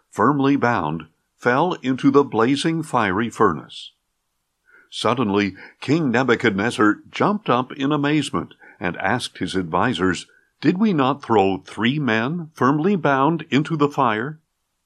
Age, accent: 60-79, American